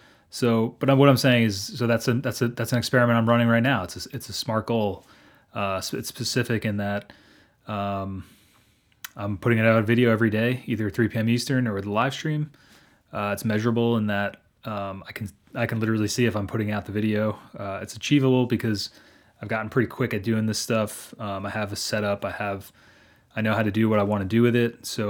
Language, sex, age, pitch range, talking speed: English, male, 20-39, 105-120 Hz, 230 wpm